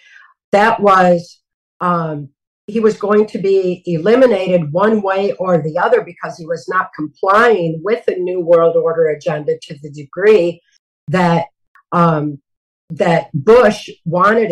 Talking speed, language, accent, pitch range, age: 135 wpm, English, American, 170-215 Hz, 50-69